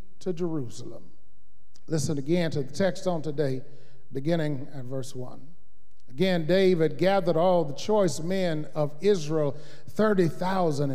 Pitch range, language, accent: 165-220 Hz, English, American